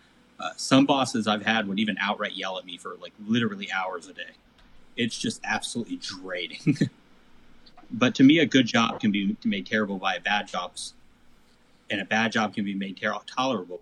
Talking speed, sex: 180 wpm, male